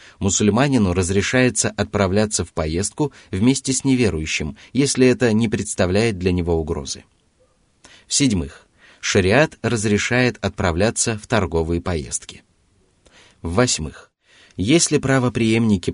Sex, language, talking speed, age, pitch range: male, Russian, 100 wpm, 30-49, 90-115 Hz